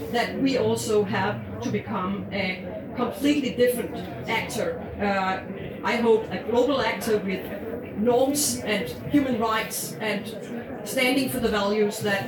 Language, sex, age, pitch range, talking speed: Danish, female, 40-59, 205-245 Hz, 130 wpm